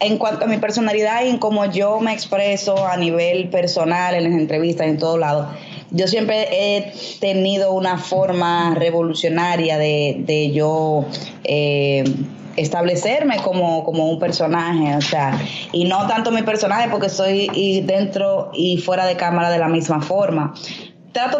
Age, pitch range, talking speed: 20-39, 175-205 Hz, 155 wpm